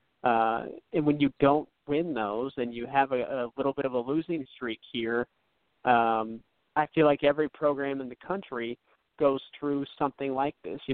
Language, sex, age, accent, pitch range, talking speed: English, male, 40-59, American, 125-150 Hz, 185 wpm